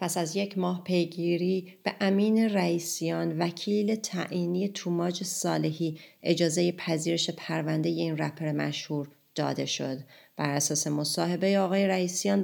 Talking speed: 120 wpm